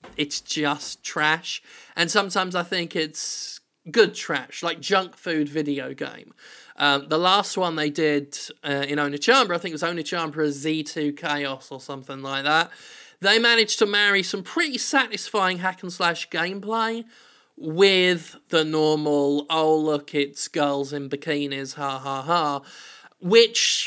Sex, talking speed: male, 150 wpm